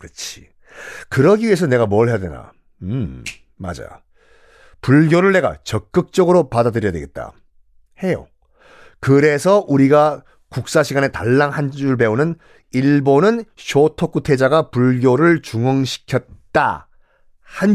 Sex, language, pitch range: male, Korean, 115-170 Hz